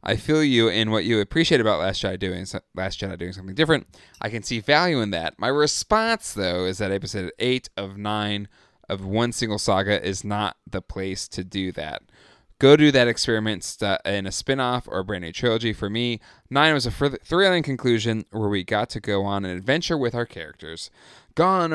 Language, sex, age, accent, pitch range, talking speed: English, male, 20-39, American, 95-130 Hz, 205 wpm